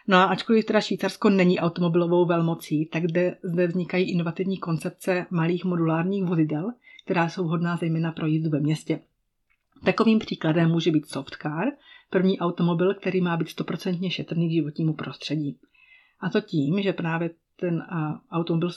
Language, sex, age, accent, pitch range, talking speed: Czech, female, 30-49, native, 165-190 Hz, 145 wpm